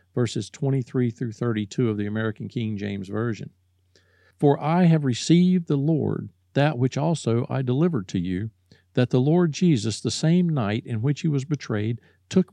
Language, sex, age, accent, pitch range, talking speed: English, male, 50-69, American, 110-160 Hz, 170 wpm